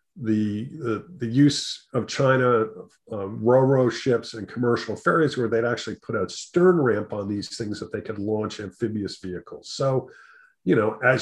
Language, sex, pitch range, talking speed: English, male, 105-125 Hz, 170 wpm